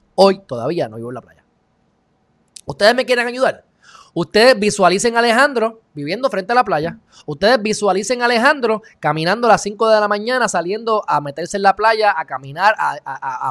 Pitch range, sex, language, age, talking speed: 165-230 Hz, male, Spanish, 20-39, 185 wpm